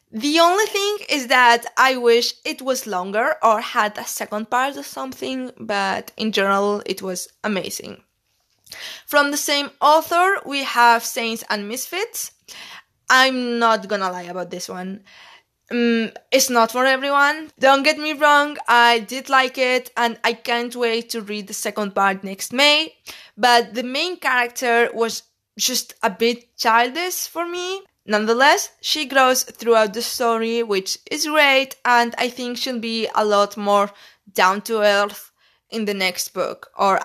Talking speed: 160 wpm